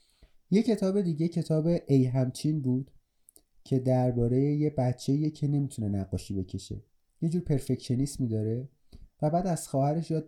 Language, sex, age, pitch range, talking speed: Persian, male, 30-49, 120-150 Hz, 140 wpm